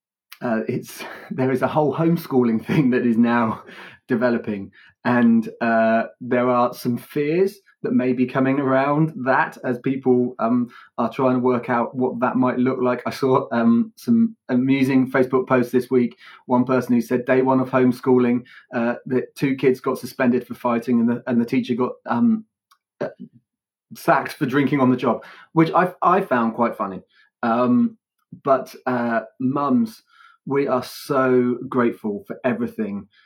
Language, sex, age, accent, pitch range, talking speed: English, male, 30-49, British, 120-135 Hz, 165 wpm